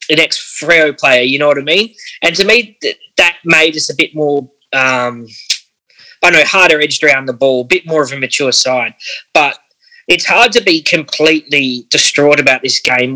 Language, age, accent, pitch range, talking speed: English, 20-39, Australian, 135-175 Hz, 200 wpm